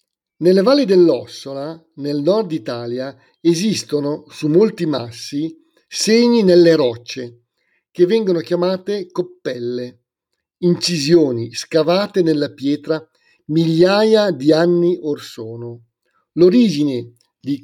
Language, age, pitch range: Italian, 50-69, 140-190 Hz